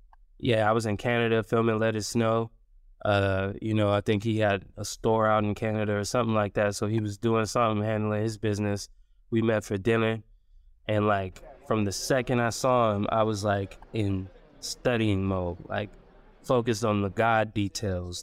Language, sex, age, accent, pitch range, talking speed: English, male, 20-39, American, 100-120 Hz, 190 wpm